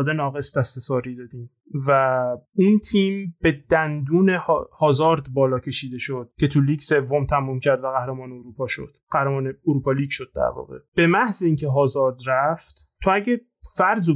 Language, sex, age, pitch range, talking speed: Persian, male, 30-49, 135-170 Hz, 160 wpm